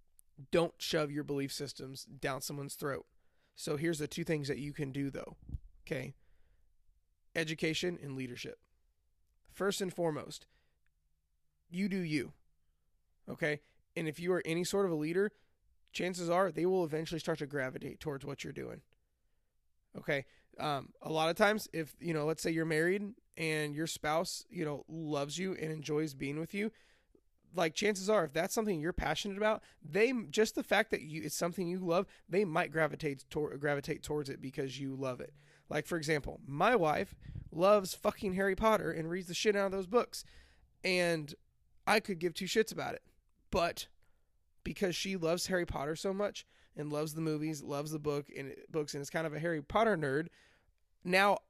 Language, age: English, 20-39